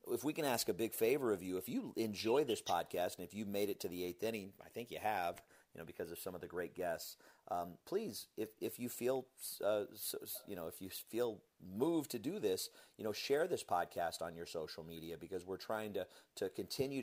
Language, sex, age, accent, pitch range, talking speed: English, male, 30-49, American, 85-120 Hz, 240 wpm